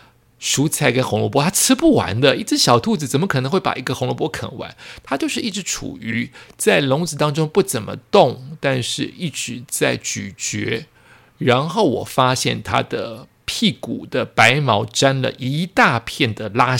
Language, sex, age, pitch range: Chinese, male, 50-69, 120-160 Hz